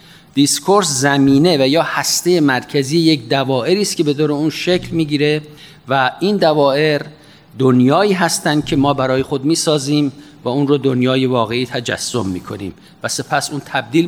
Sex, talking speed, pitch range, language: male, 165 wpm, 135-180 Hz, Persian